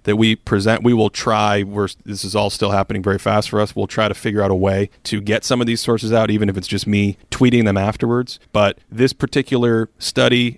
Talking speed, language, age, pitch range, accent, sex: 240 wpm, English, 30-49, 105-130 Hz, American, male